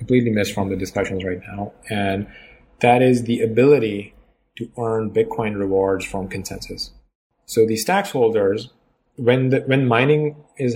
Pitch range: 100-125 Hz